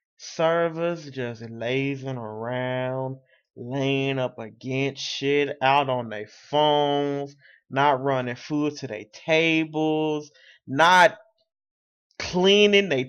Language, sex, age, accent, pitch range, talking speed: English, male, 20-39, American, 140-215 Hz, 95 wpm